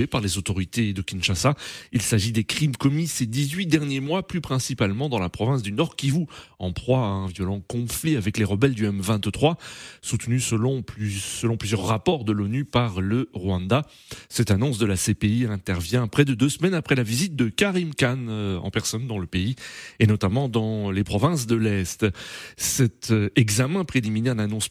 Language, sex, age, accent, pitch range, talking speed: French, male, 30-49, French, 105-145 Hz, 190 wpm